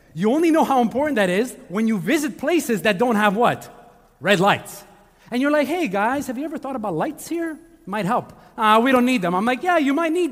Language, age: English, 30-49